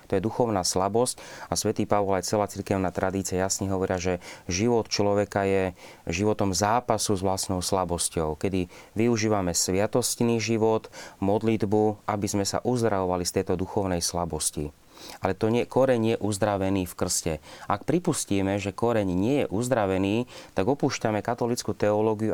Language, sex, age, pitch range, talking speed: Slovak, male, 30-49, 95-115 Hz, 150 wpm